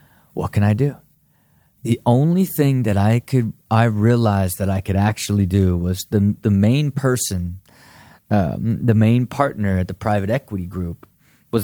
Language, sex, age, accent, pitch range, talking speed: English, male, 30-49, American, 100-120 Hz, 165 wpm